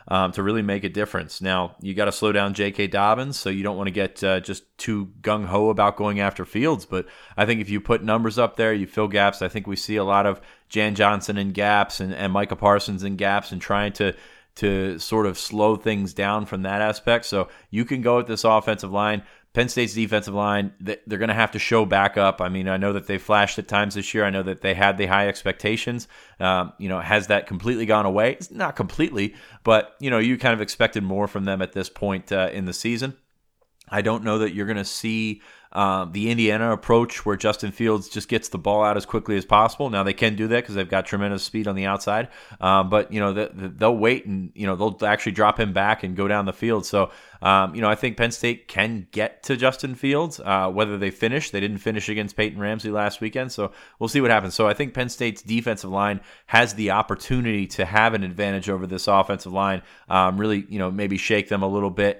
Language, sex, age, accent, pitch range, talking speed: English, male, 30-49, American, 100-110 Hz, 245 wpm